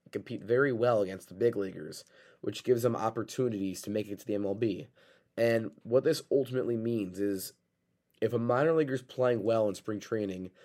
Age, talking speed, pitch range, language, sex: 20-39, 185 wpm, 105-120 Hz, English, male